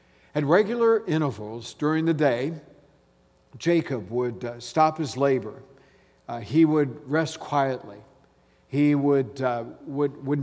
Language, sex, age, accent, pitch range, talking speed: English, male, 50-69, American, 120-155 Hz, 125 wpm